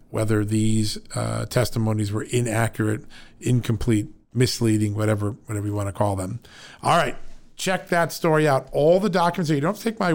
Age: 50-69